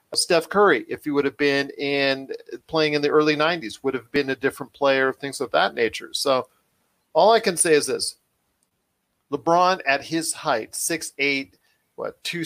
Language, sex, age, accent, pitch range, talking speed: English, male, 40-59, American, 130-165 Hz, 185 wpm